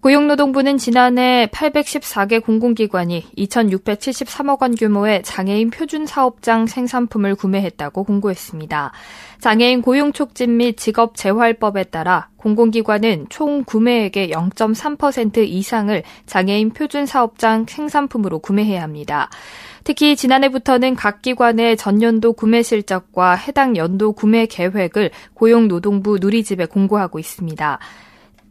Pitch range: 200-255 Hz